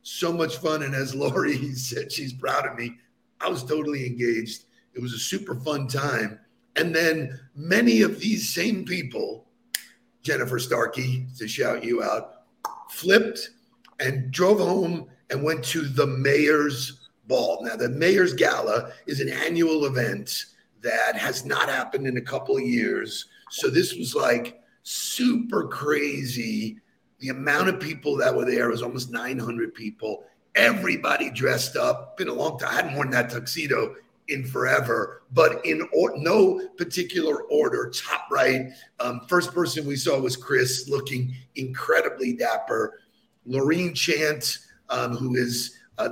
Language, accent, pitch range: English, American, 125-165 Hz